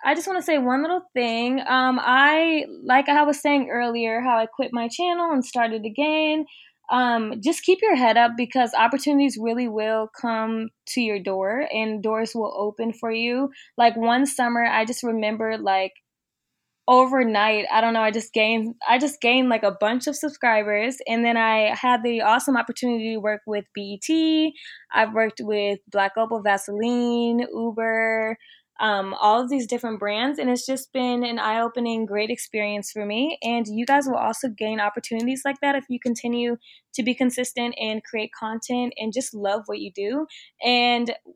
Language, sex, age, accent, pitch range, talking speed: English, female, 10-29, American, 220-265 Hz, 180 wpm